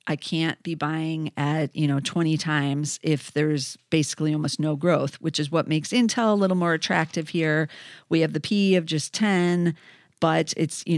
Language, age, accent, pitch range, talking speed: English, 40-59, American, 155-180 Hz, 190 wpm